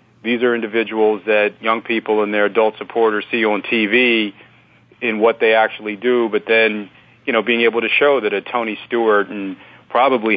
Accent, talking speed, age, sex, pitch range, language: American, 185 wpm, 40-59, male, 105-115 Hz, English